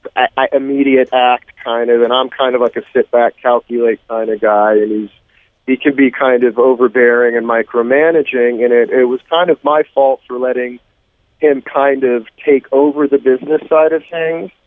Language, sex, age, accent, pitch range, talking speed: English, male, 40-59, American, 115-140 Hz, 185 wpm